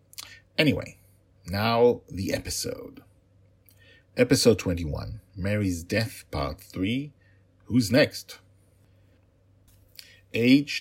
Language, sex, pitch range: English, male, 85-100 Hz